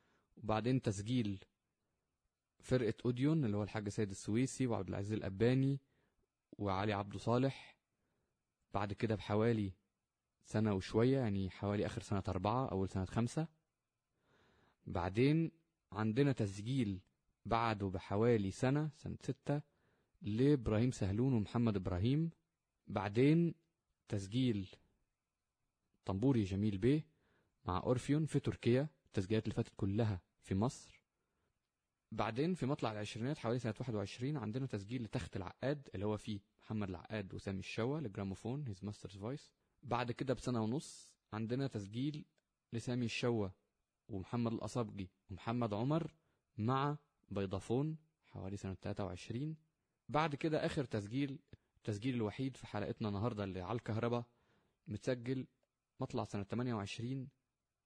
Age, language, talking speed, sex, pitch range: 20-39, Arabic, 115 wpm, male, 100-130 Hz